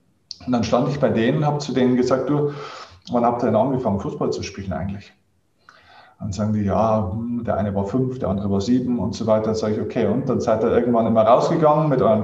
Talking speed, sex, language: 240 wpm, male, German